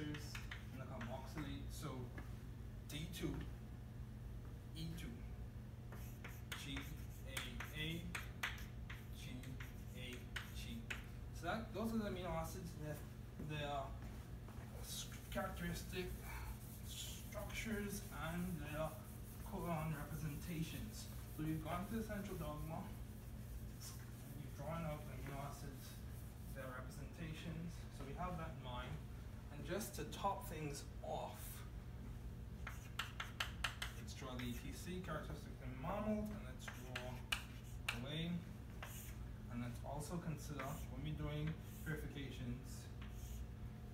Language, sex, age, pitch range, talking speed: English, male, 20-39, 115-140 Hz, 95 wpm